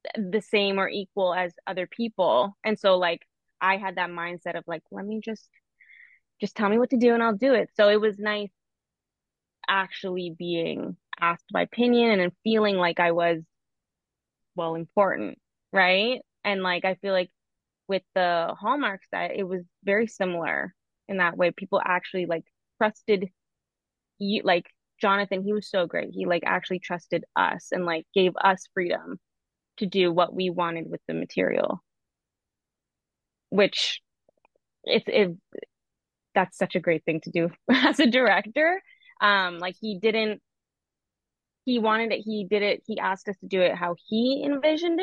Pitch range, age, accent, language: 175-210 Hz, 20-39, American, English